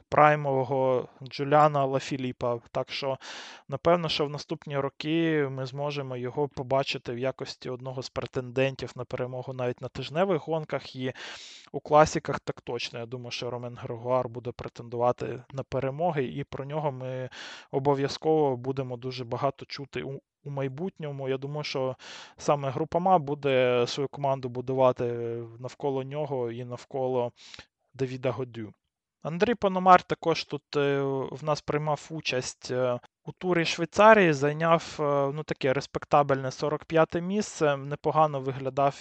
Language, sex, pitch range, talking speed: Ukrainian, male, 130-155 Hz, 130 wpm